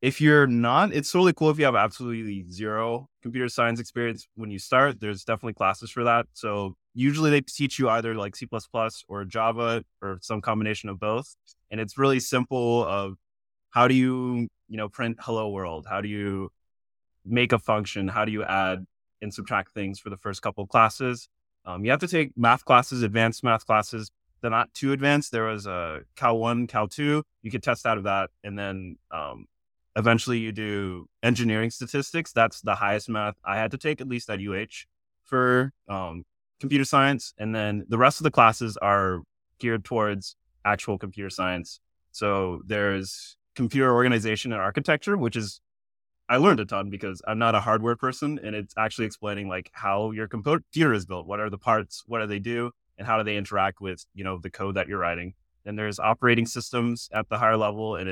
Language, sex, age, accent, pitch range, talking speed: English, male, 20-39, American, 100-120 Hz, 195 wpm